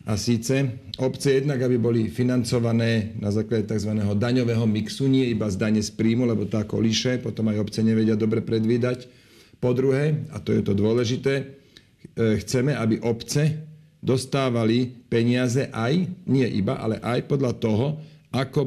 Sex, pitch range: male, 110-130 Hz